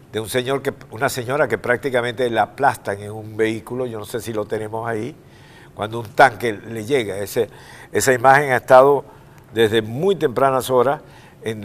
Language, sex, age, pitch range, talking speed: Spanish, male, 60-79, 110-140 Hz, 180 wpm